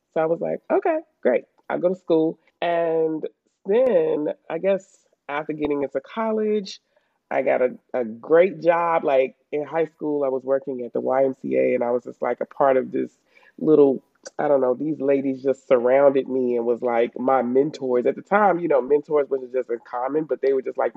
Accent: American